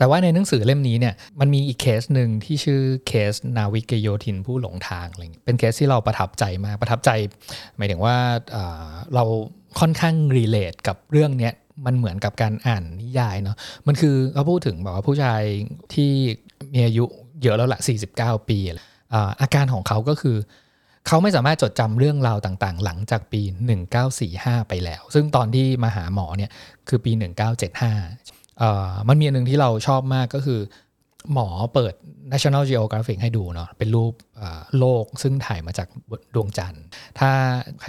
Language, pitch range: Thai, 105-135 Hz